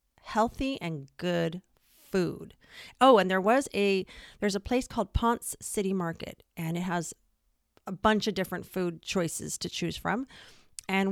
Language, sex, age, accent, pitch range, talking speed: English, female, 40-59, American, 170-210 Hz, 155 wpm